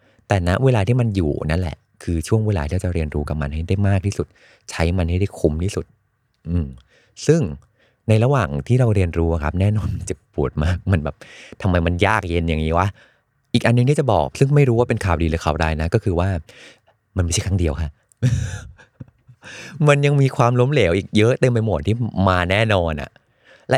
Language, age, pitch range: Thai, 20-39, 85-115 Hz